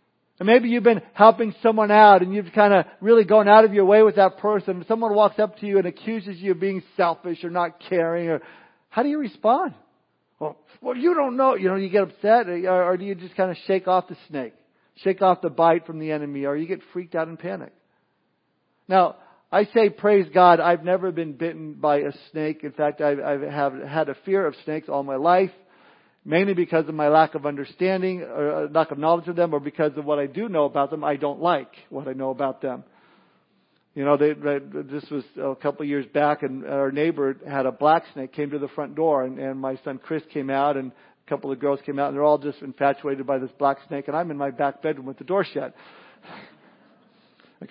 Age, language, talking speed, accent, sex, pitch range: 50-69, English, 235 wpm, American, male, 145-195 Hz